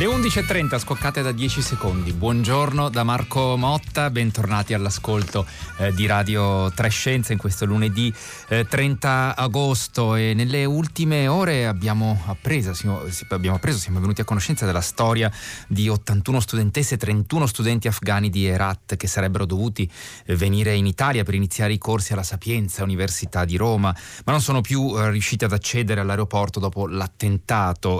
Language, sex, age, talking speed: Italian, male, 30-49, 155 wpm